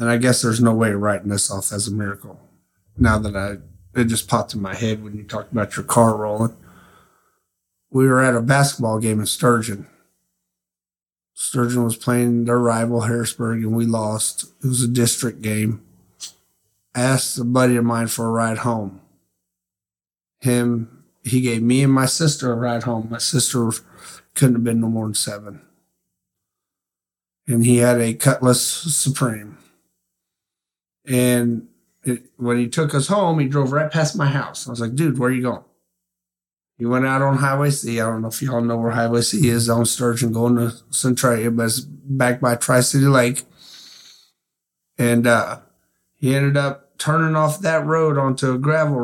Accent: American